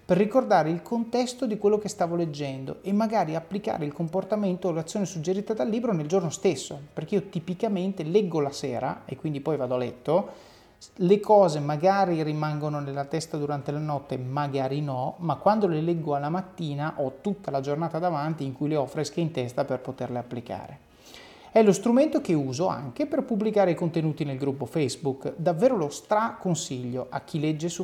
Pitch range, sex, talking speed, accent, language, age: 145-190 Hz, male, 185 wpm, native, Italian, 30-49